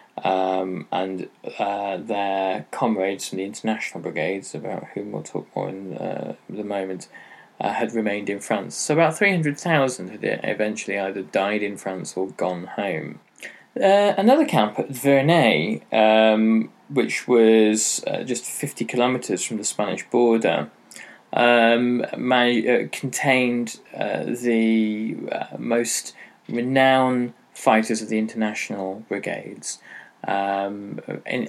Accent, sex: British, male